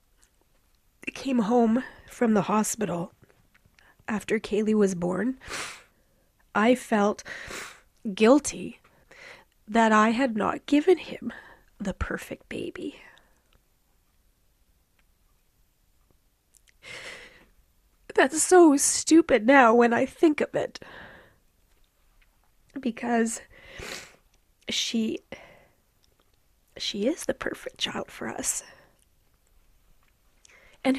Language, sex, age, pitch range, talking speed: English, female, 30-49, 205-280 Hz, 75 wpm